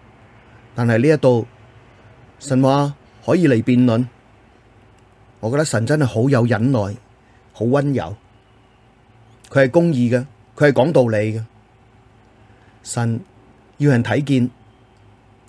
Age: 30-49